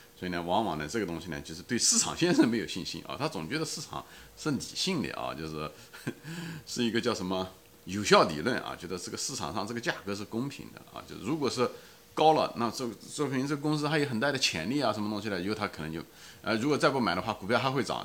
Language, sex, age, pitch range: Chinese, male, 30-49, 90-135 Hz